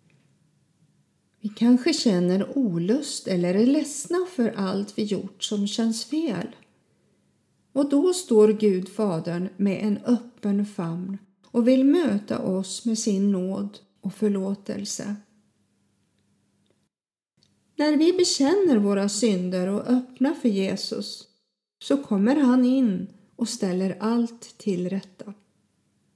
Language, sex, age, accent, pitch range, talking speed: Swedish, female, 40-59, native, 200-255 Hz, 110 wpm